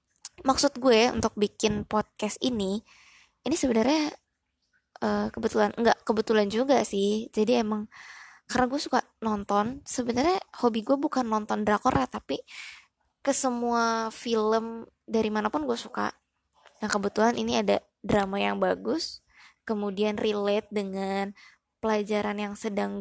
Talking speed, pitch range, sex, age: 125 wpm, 205-240 Hz, female, 20-39